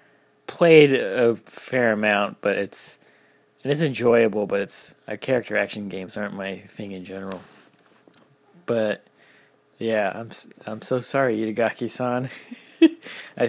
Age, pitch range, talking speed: 20-39, 100-120 Hz, 115 wpm